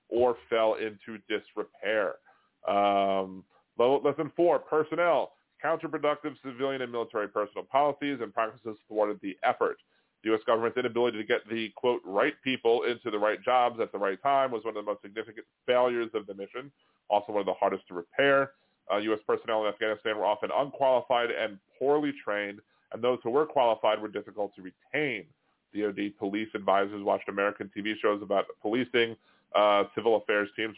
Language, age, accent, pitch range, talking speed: English, 30-49, American, 100-135 Hz, 170 wpm